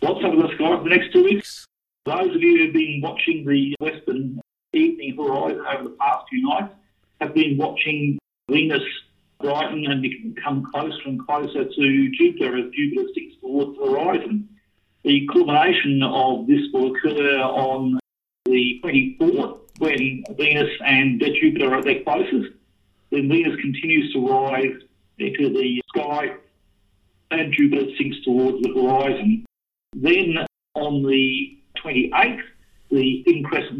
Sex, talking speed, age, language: male, 145 wpm, 50-69, English